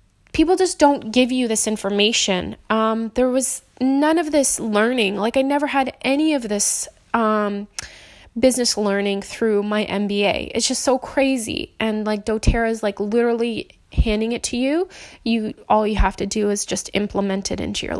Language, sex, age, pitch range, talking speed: English, female, 20-39, 210-245 Hz, 175 wpm